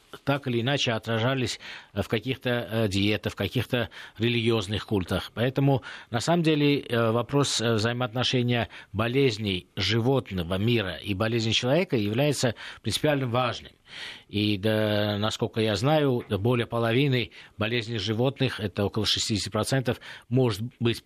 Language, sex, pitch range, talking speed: Russian, male, 105-125 Hz, 110 wpm